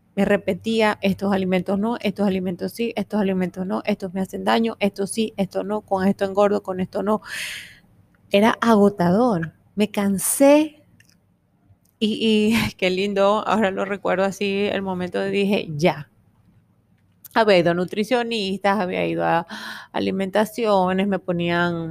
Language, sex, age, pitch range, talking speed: Spanish, female, 20-39, 180-210 Hz, 140 wpm